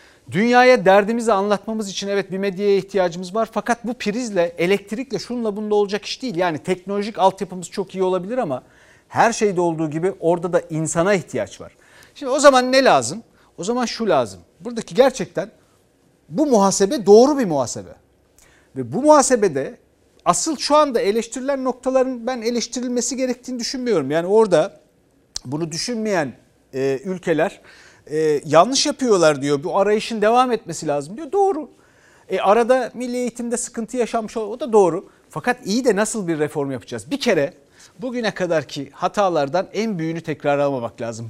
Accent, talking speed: native, 150 wpm